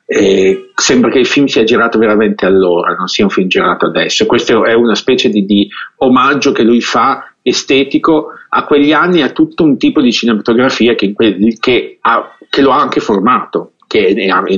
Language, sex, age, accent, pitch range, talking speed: English, male, 50-69, Italian, 110-150 Hz, 175 wpm